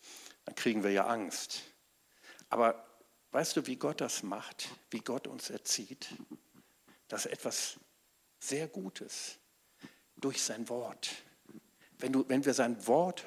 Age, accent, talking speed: 50-69, German, 135 wpm